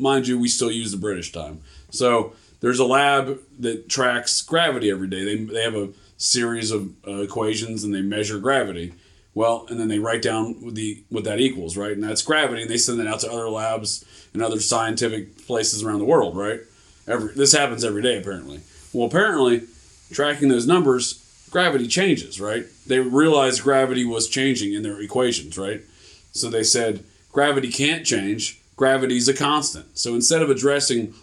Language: English